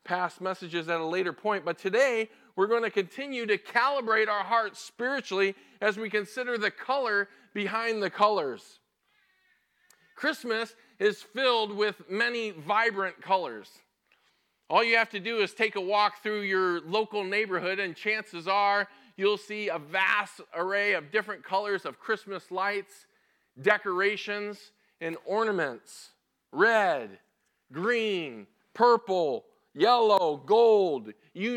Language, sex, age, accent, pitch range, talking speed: English, male, 40-59, American, 190-230 Hz, 130 wpm